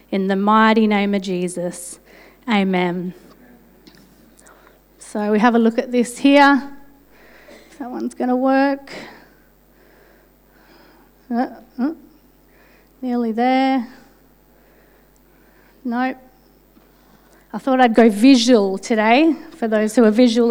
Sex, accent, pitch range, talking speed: female, Australian, 215-260 Hz, 100 wpm